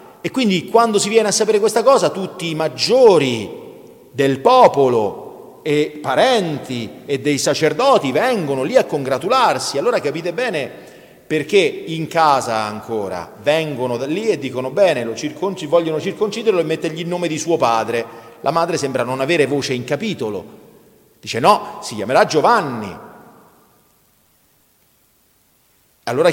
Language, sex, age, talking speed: Italian, male, 40-59, 140 wpm